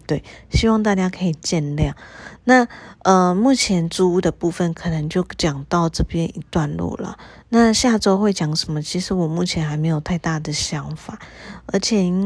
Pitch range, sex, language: 160-200 Hz, female, Chinese